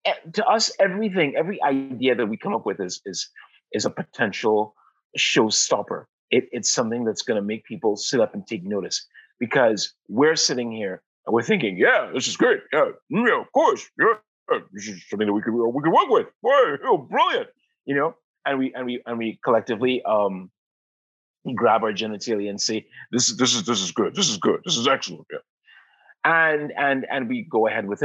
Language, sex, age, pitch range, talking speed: English, male, 30-49, 110-165 Hz, 205 wpm